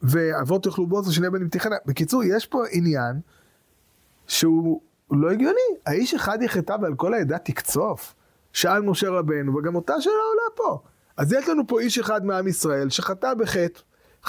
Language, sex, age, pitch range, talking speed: Hebrew, male, 20-39, 175-235 Hz, 160 wpm